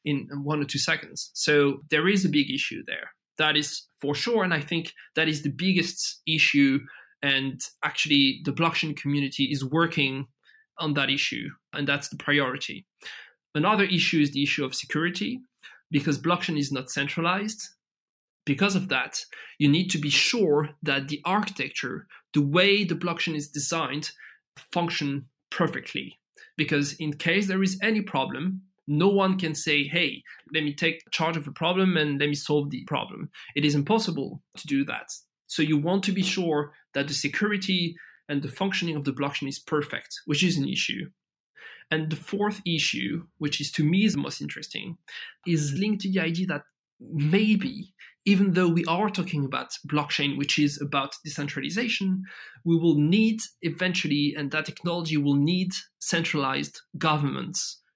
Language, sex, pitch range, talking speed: English, male, 145-185 Hz, 170 wpm